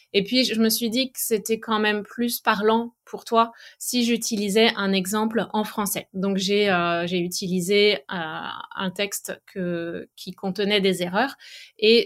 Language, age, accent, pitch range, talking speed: French, 20-39, French, 195-235 Hz, 170 wpm